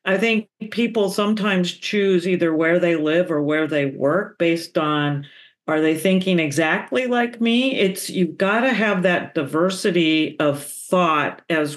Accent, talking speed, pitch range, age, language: American, 160 wpm, 160-205 Hz, 50-69, English